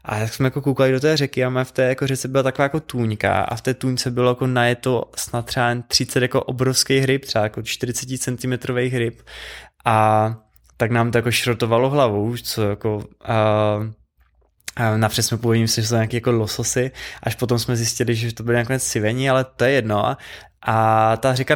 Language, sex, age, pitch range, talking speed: Czech, male, 20-39, 115-130 Hz, 190 wpm